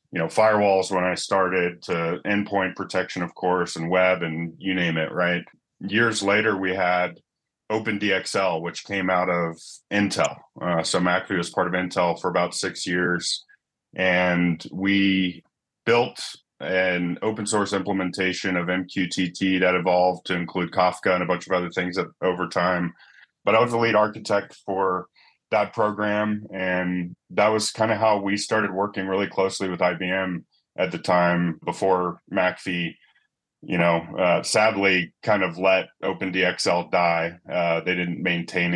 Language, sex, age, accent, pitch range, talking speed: English, male, 30-49, American, 90-95 Hz, 155 wpm